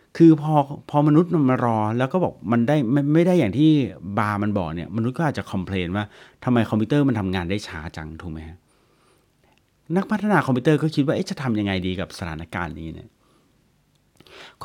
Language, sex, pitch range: Thai, male, 100-145 Hz